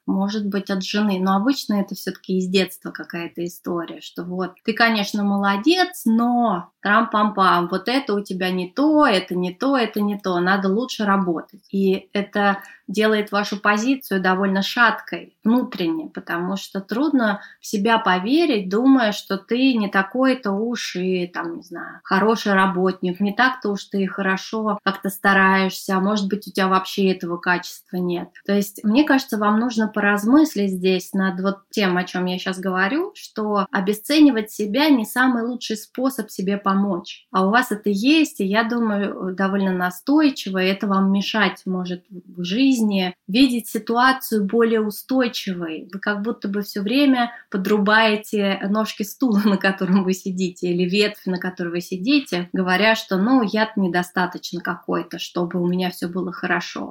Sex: female